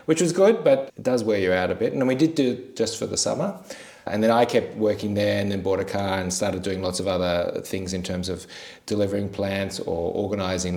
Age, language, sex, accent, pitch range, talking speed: 30-49, English, male, Australian, 90-105 Hz, 250 wpm